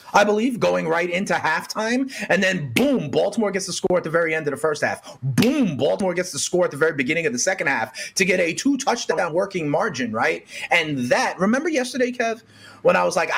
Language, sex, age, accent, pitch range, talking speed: English, male, 30-49, American, 160-245 Hz, 230 wpm